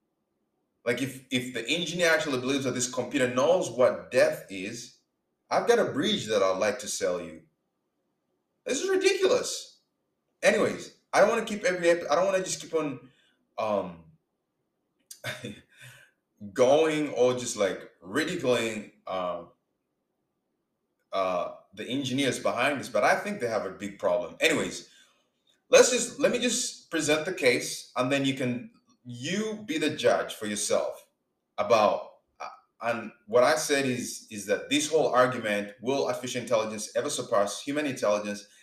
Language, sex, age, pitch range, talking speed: English, male, 20-39, 120-185 Hz, 155 wpm